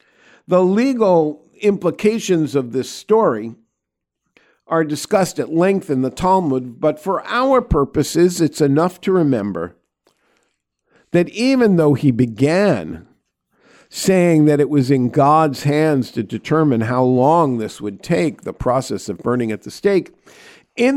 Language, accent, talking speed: English, American, 135 wpm